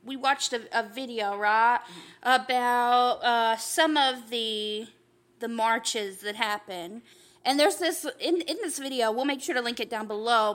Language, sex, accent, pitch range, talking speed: English, female, American, 230-345 Hz, 170 wpm